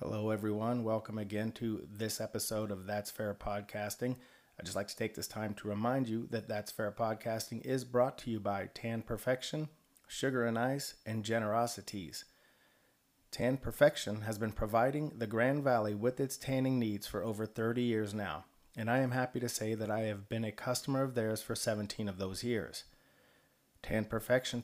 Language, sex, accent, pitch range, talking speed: English, male, American, 110-125 Hz, 185 wpm